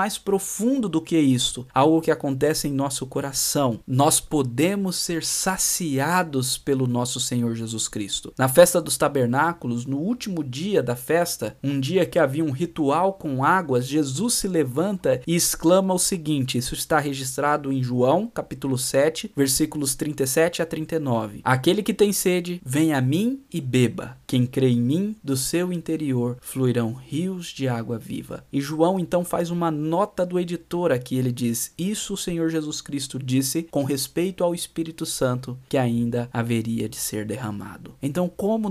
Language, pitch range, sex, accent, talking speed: Portuguese, 130-175 Hz, male, Brazilian, 165 wpm